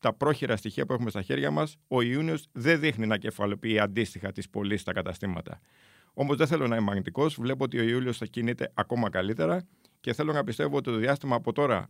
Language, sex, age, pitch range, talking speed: Greek, male, 50-69, 110-140 Hz, 210 wpm